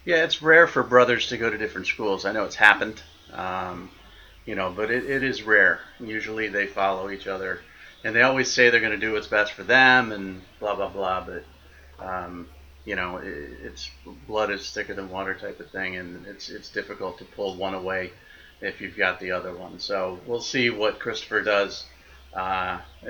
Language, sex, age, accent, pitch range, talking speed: English, male, 30-49, American, 90-120 Hz, 205 wpm